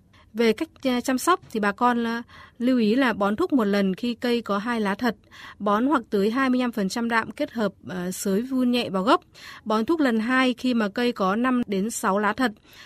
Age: 20-39